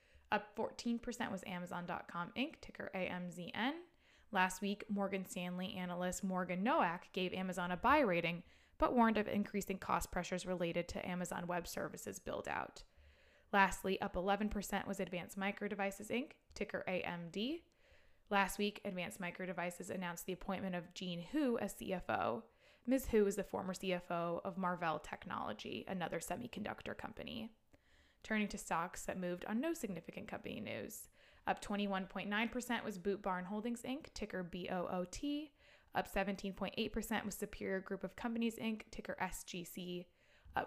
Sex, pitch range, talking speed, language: female, 185-225 Hz, 140 wpm, English